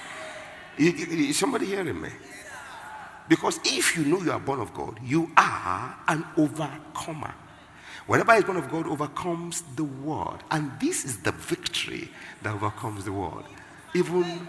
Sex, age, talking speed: male, 50-69, 145 wpm